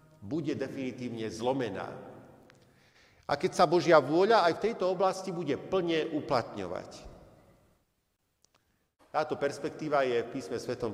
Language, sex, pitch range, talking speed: Slovak, male, 140-185 Hz, 115 wpm